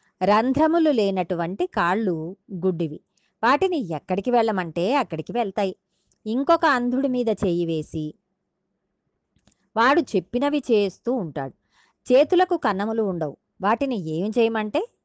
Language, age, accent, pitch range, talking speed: Telugu, 20-39, native, 180-240 Hz, 95 wpm